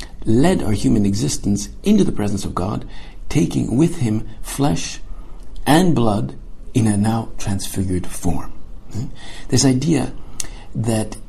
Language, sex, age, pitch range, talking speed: English, male, 60-79, 100-125 Hz, 130 wpm